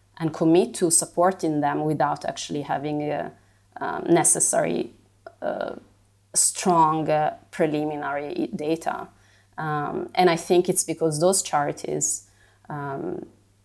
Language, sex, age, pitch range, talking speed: English, female, 30-49, 105-165 Hz, 110 wpm